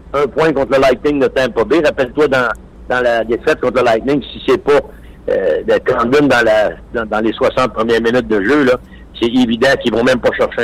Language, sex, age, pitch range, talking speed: French, male, 60-79, 125-180 Hz, 220 wpm